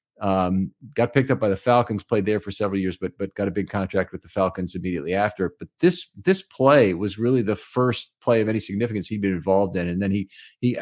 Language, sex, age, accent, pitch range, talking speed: English, male, 40-59, American, 95-125 Hz, 240 wpm